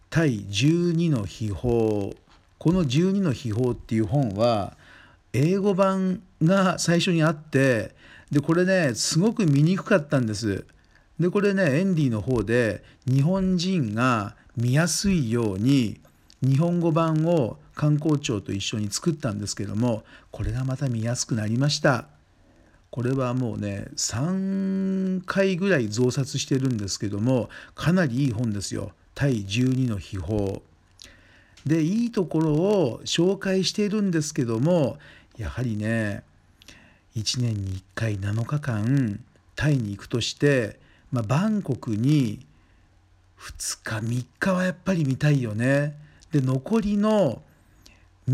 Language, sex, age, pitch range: Japanese, male, 50-69, 105-165 Hz